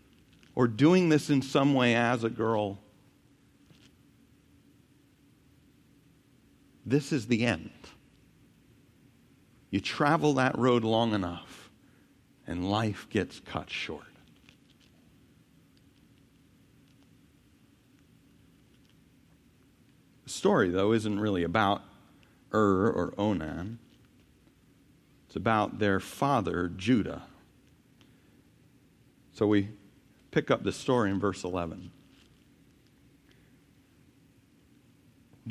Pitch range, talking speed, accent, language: 105-135 Hz, 80 wpm, American, English